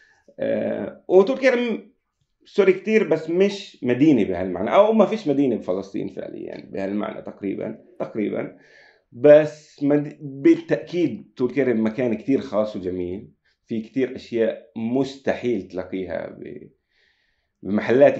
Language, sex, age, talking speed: Arabic, male, 30-49, 110 wpm